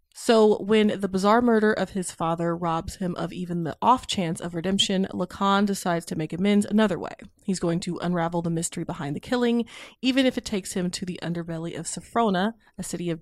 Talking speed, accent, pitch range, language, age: 210 wpm, American, 175-220 Hz, English, 20-39